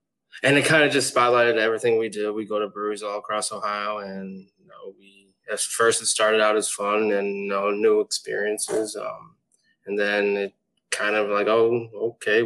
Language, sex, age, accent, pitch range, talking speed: English, male, 20-39, American, 105-120 Hz, 195 wpm